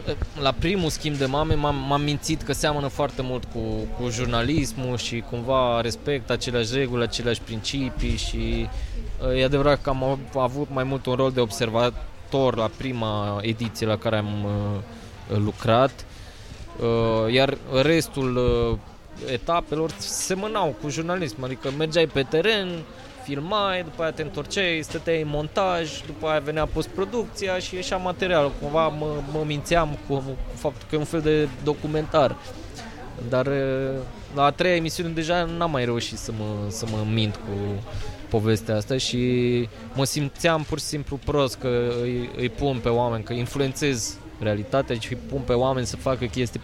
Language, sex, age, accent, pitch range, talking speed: Romanian, male, 20-39, native, 115-150 Hz, 155 wpm